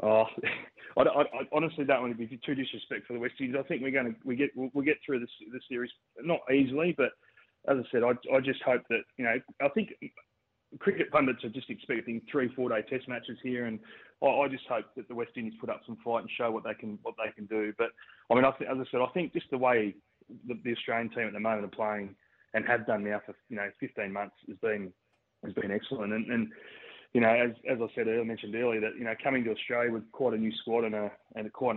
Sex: male